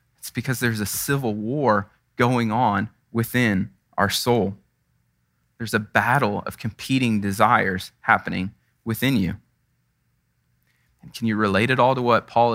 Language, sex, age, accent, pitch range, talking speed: English, male, 20-39, American, 100-125 Hz, 140 wpm